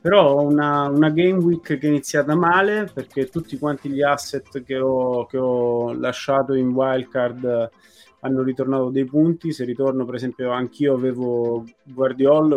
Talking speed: 160 wpm